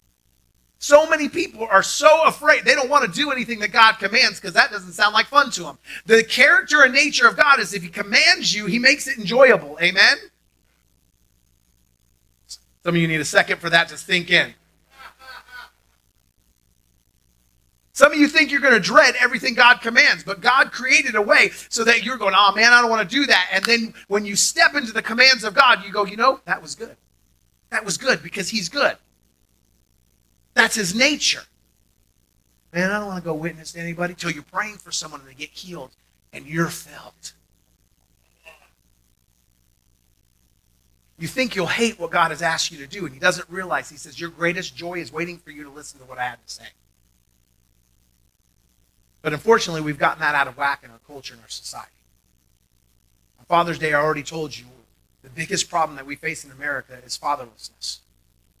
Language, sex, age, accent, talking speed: English, male, 40-59, American, 190 wpm